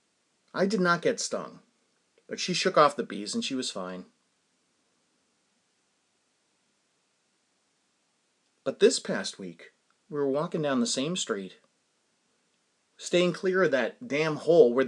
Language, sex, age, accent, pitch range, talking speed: English, male, 30-49, American, 145-215 Hz, 135 wpm